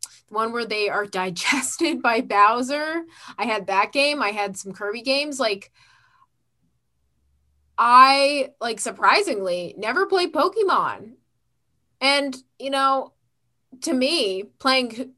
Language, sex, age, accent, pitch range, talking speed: English, female, 20-39, American, 195-260 Hz, 115 wpm